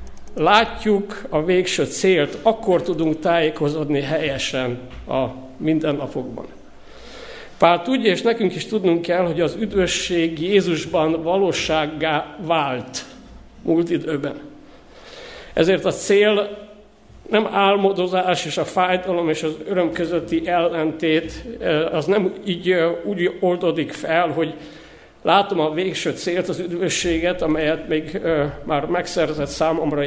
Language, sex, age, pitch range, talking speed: Hungarian, male, 50-69, 155-185 Hz, 115 wpm